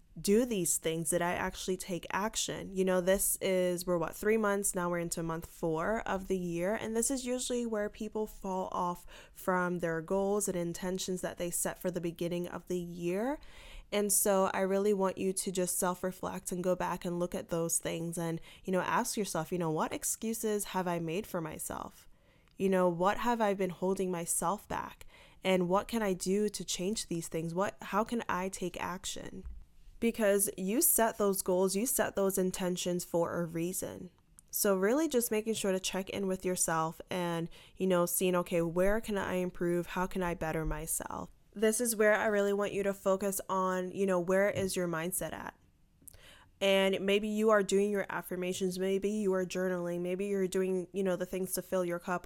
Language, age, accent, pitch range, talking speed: English, 20-39, American, 175-200 Hz, 200 wpm